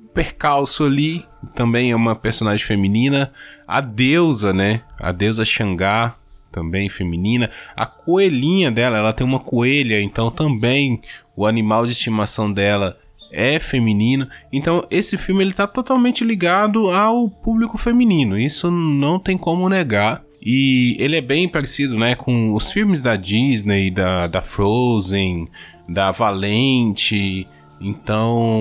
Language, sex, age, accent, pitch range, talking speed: Portuguese, male, 20-39, Brazilian, 110-145 Hz, 130 wpm